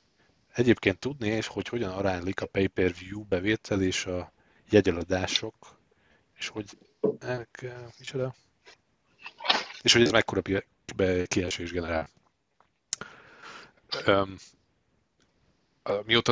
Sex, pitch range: male, 85-100 Hz